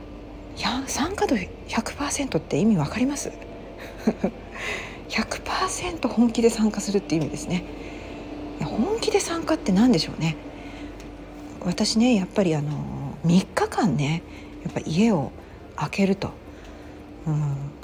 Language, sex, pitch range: Japanese, female, 135-205 Hz